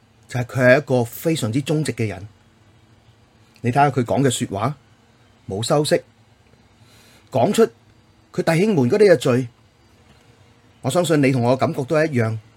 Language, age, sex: Chinese, 30-49, male